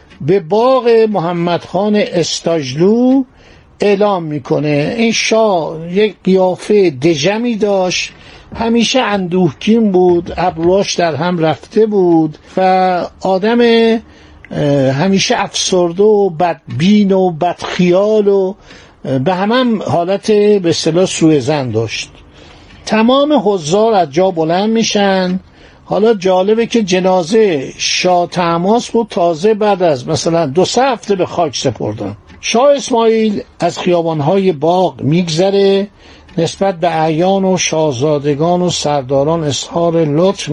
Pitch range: 160-205 Hz